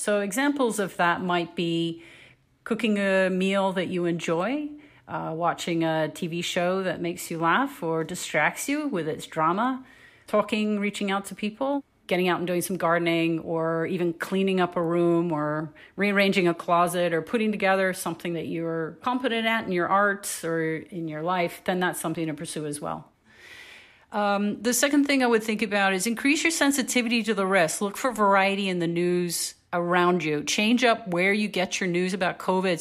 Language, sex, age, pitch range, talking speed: English, female, 40-59, 170-205 Hz, 185 wpm